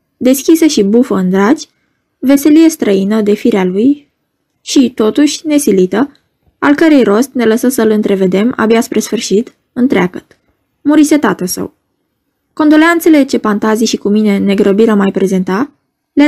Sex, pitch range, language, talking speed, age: female, 205-275 Hz, Romanian, 135 wpm, 20-39